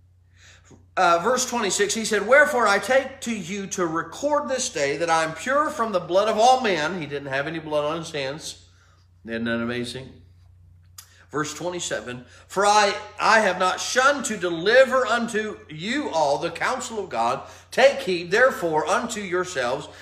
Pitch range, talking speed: 175-270 Hz, 170 wpm